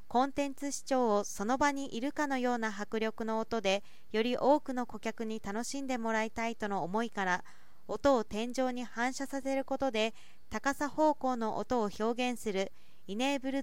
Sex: female